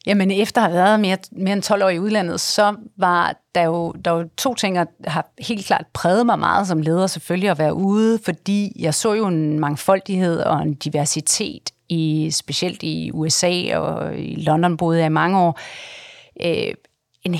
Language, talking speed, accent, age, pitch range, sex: Danish, 185 wpm, native, 40-59, 165-200 Hz, female